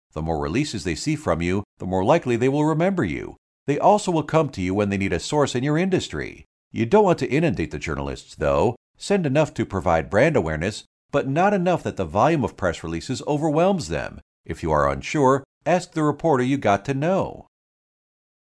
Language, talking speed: English, 210 wpm